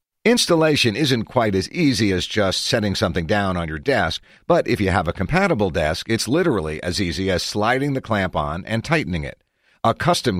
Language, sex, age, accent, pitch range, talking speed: English, male, 50-69, American, 90-130 Hz, 195 wpm